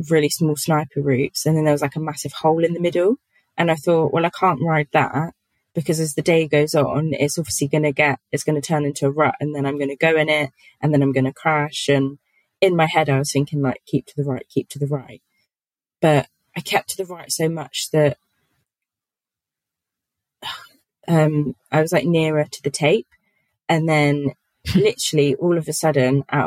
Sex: female